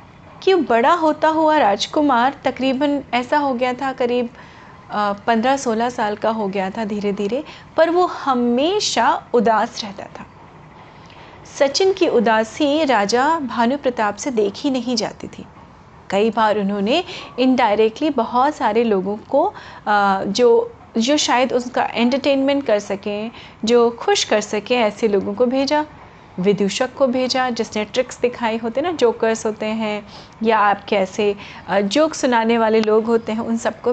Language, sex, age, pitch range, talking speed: Hindi, female, 30-49, 220-285 Hz, 145 wpm